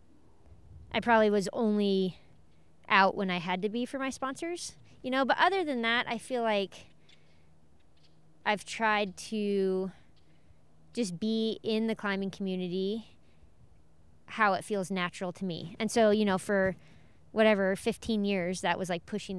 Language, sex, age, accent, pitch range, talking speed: English, female, 20-39, American, 180-215 Hz, 150 wpm